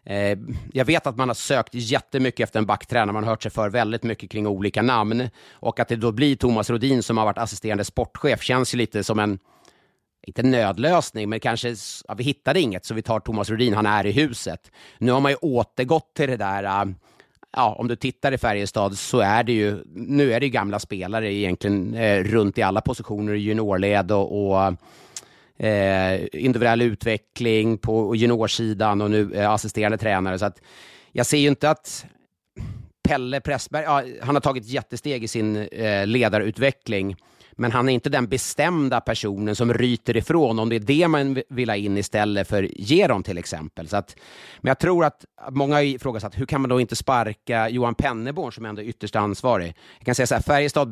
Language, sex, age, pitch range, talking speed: Swedish, male, 30-49, 105-125 Hz, 195 wpm